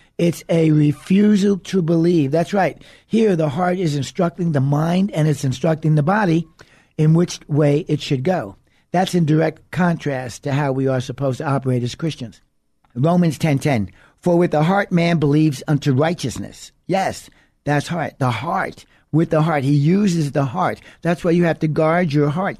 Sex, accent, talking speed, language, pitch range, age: male, American, 185 wpm, English, 140-170 Hz, 60-79